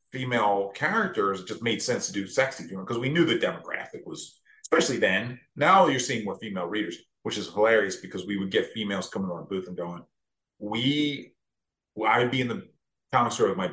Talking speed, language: 205 wpm, English